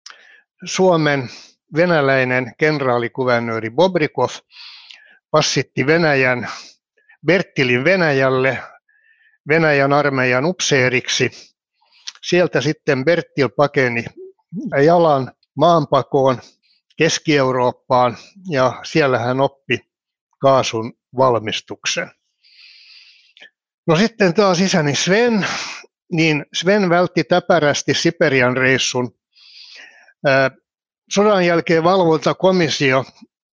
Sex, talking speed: male, 70 wpm